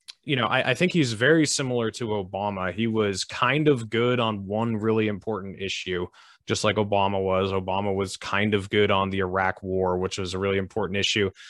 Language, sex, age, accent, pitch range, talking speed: English, male, 20-39, American, 95-115 Hz, 205 wpm